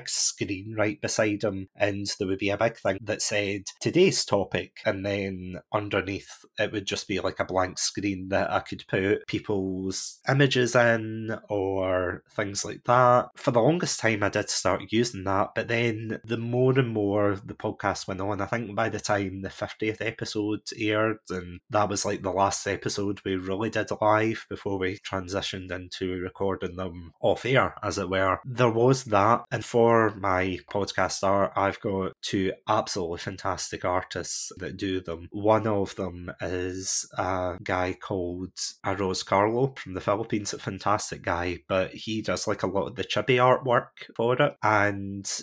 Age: 20-39